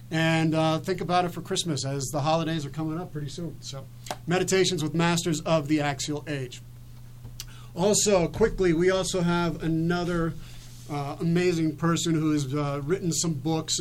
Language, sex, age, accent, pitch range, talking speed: English, male, 40-59, American, 150-180 Hz, 160 wpm